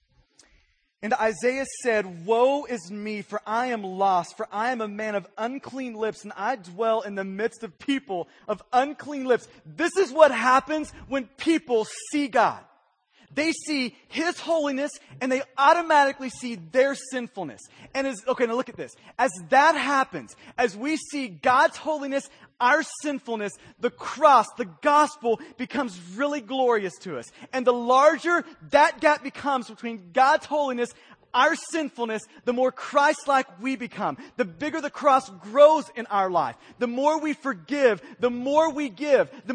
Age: 30-49